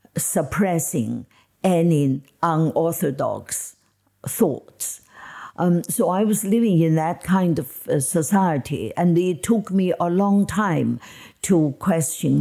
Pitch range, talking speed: 150-185 Hz, 110 wpm